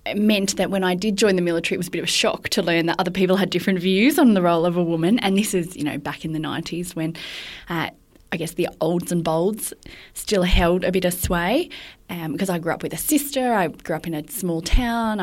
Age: 20-39